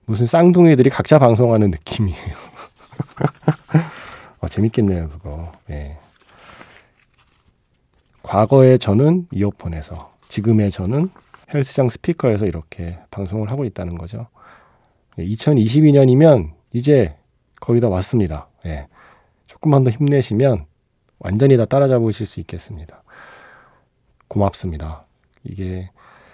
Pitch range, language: 95-135 Hz, Korean